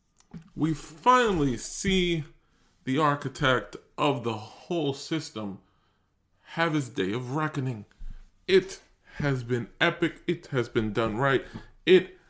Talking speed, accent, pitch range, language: 115 wpm, American, 110-165 Hz, English